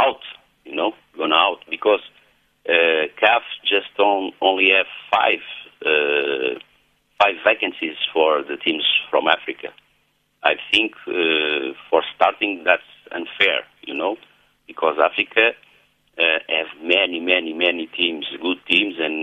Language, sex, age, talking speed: English, male, 60-79, 130 wpm